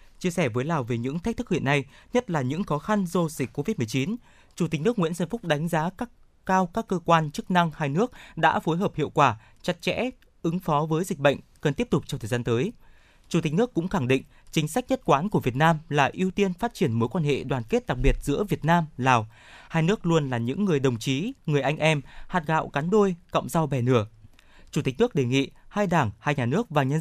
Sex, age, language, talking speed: male, 20-39, Vietnamese, 255 wpm